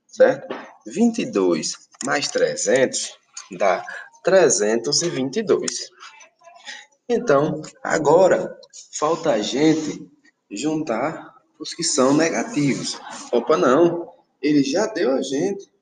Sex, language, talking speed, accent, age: male, Portuguese, 85 wpm, Brazilian, 20-39